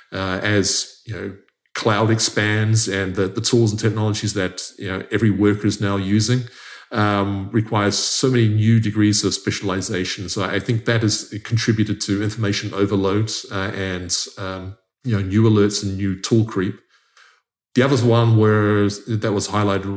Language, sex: English, male